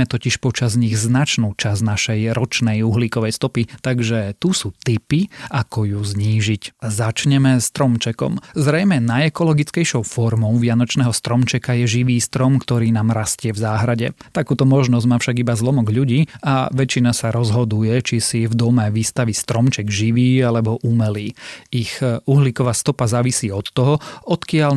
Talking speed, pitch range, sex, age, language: 140 wpm, 115-130 Hz, male, 30-49, Slovak